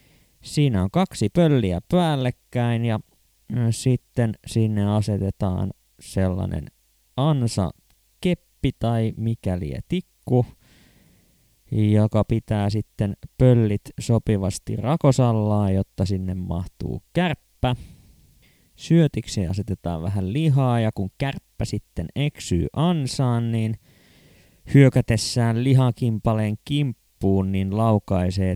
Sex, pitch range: male, 100-125 Hz